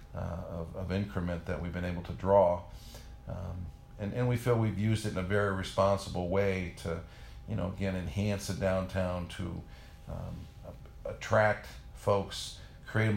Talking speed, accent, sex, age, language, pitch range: 160 wpm, American, male, 50-69, English, 90-100 Hz